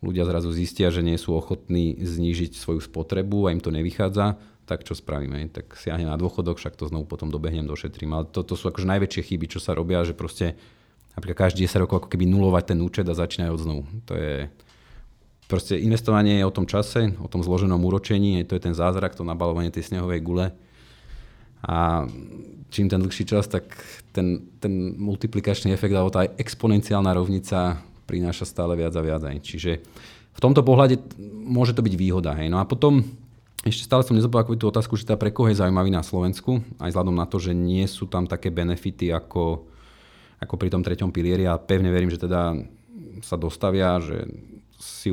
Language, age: Slovak, 30-49